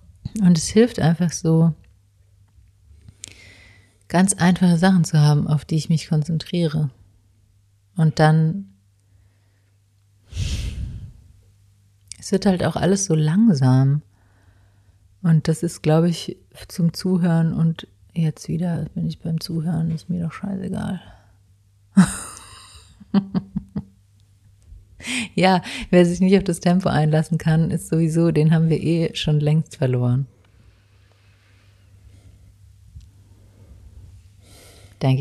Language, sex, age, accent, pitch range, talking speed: German, female, 30-49, German, 100-165 Hz, 105 wpm